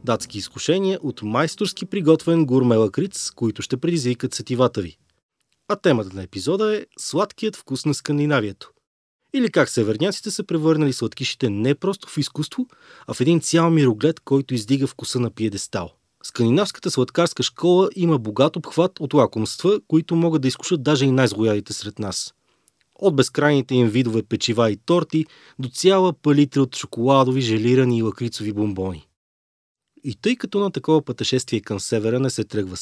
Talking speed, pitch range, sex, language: 155 wpm, 115-170 Hz, male, Bulgarian